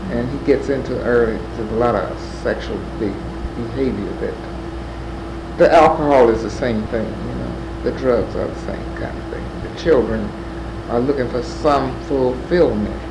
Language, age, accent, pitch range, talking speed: English, 60-79, American, 115-155 Hz, 150 wpm